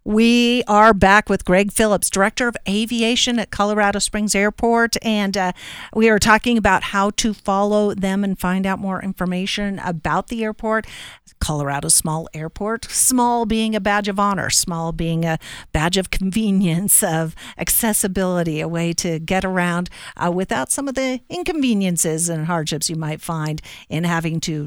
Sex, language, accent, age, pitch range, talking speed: female, English, American, 50-69, 175-220 Hz, 165 wpm